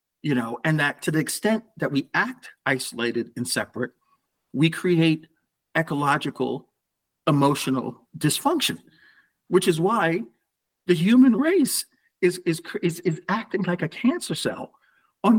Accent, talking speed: American, 135 wpm